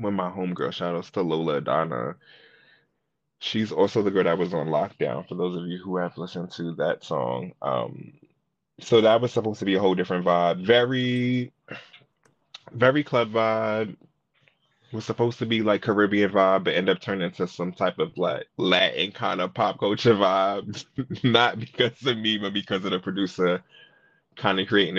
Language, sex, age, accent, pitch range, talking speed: English, male, 20-39, American, 95-120 Hz, 180 wpm